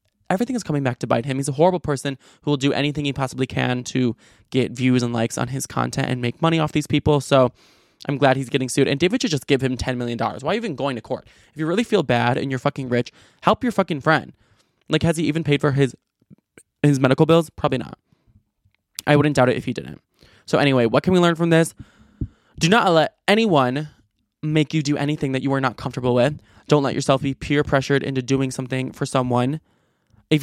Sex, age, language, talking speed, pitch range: male, 20-39, English, 230 wpm, 125-150 Hz